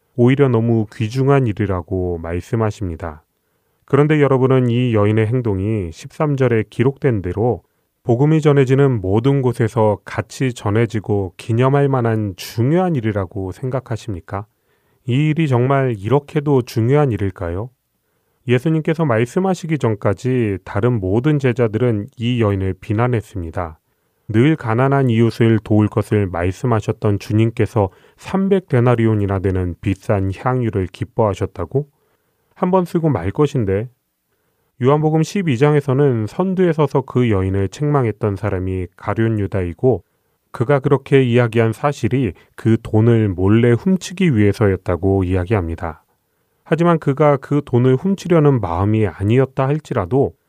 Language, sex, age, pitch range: Korean, male, 30-49, 105-135 Hz